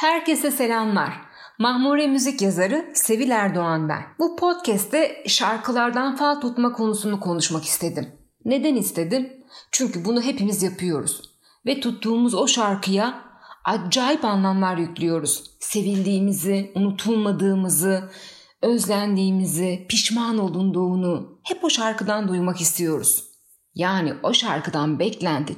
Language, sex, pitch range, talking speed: Turkish, female, 175-245 Hz, 100 wpm